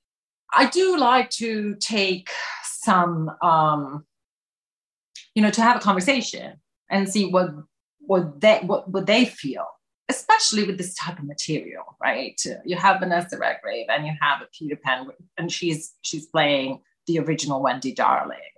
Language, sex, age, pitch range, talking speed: English, female, 30-49, 160-230 Hz, 150 wpm